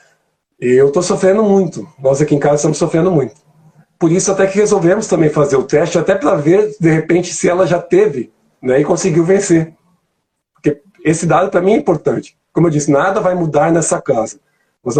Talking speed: 195 wpm